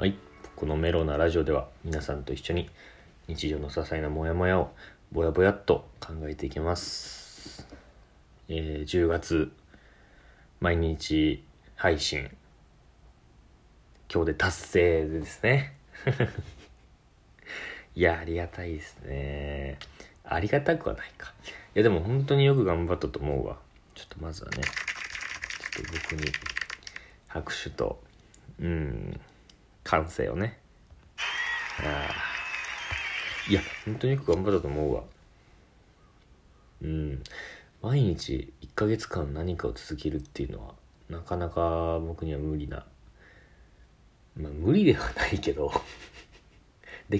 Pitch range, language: 75-90 Hz, Japanese